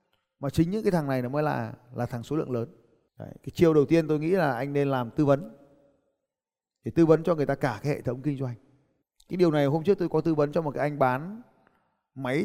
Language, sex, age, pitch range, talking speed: Vietnamese, male, 20-39, 140-185 Hz, 260 wpm